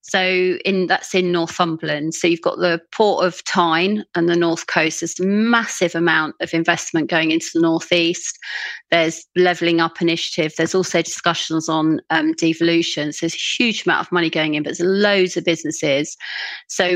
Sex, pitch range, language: female, 160-180 Hz, English